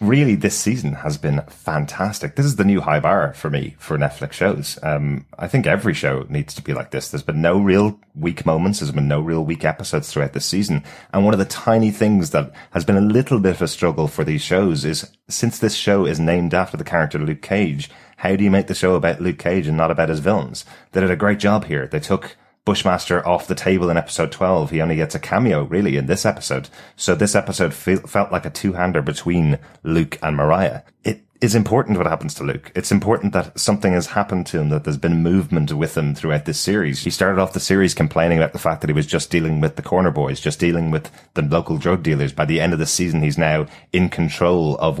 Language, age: English, 30-49